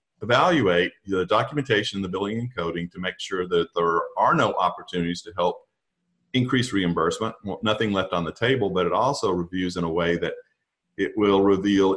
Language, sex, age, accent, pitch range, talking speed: English, male, 50-69, American, 95-120 Hz, 175 wpm